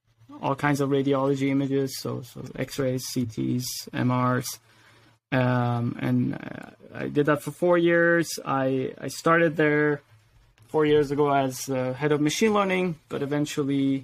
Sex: male